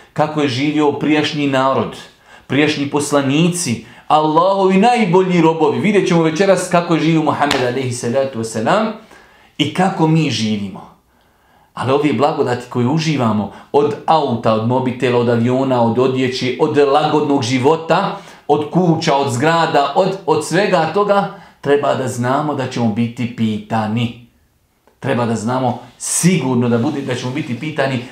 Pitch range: 125-155 Hz